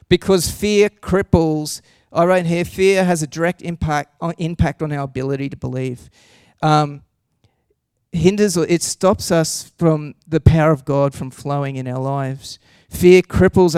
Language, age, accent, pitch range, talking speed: English, 40-59, Australian, 140-170 Hz, 155 wpm